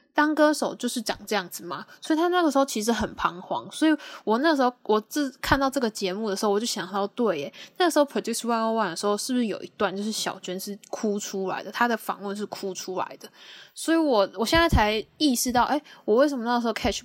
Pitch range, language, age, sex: 200-265 Hz, Chinese, 10-29, female